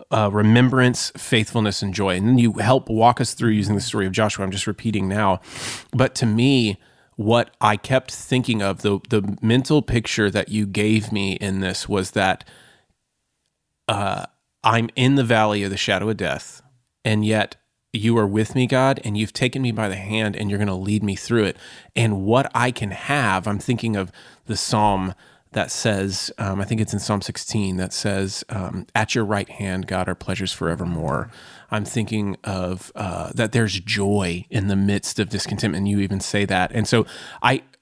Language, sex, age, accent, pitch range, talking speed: English, male, 30-49, American, 100-115 Hz, 195 wpm